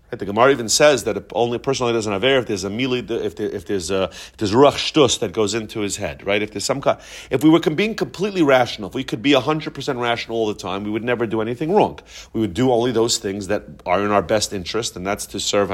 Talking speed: 275 wpm